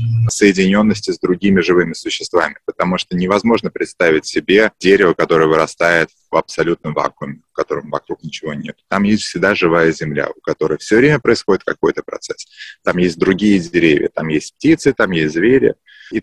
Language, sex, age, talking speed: English, male, 20-39, 165 wpm